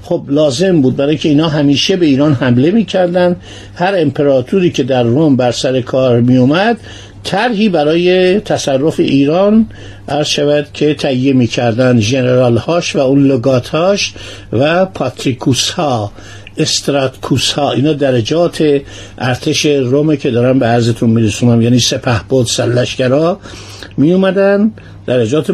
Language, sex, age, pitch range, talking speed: Persian, male, 60-79, 120-170 Hz, 130 wpm